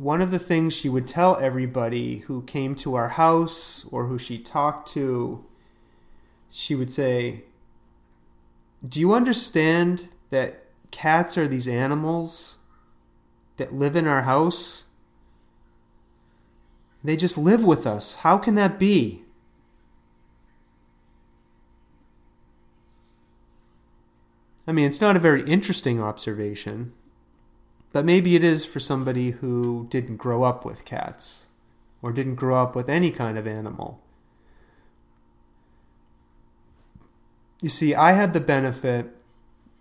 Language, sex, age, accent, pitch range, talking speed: English, male, 30-49, American, 115-155 Hz, 120 wpm